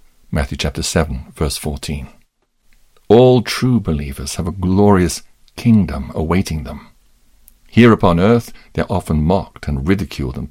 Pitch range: 75-100 Hz